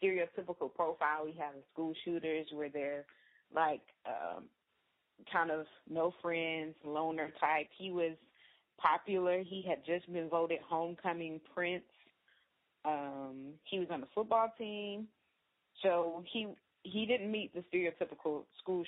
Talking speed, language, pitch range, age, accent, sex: 135 wpm, English, 155-175 Hz, 20-39, American, female